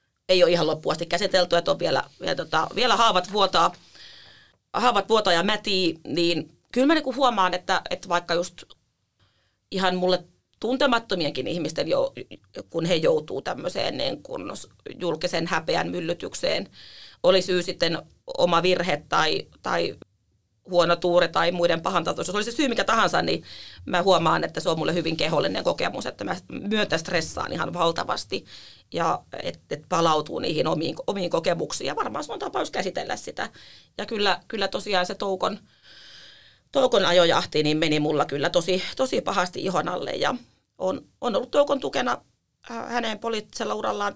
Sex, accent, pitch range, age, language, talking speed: female, native, 170-210 Hz, 30-49, Finnish, 150 wpm